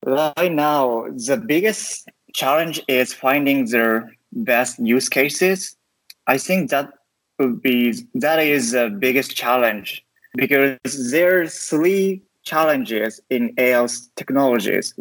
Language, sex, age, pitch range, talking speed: English, male, 20-39, 120-150 Hz, 115 wpm